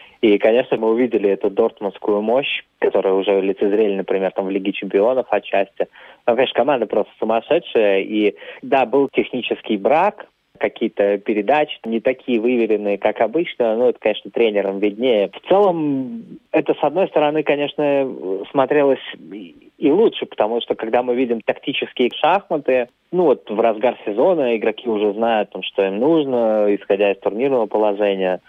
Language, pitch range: Russian, 105-140 Hz